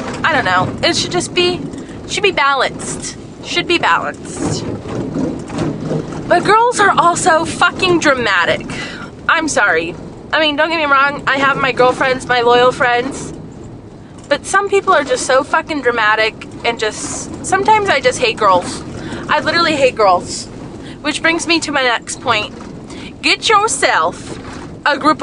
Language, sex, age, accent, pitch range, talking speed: English, female, 20-39, American, 245-325 Hz, 150 wpm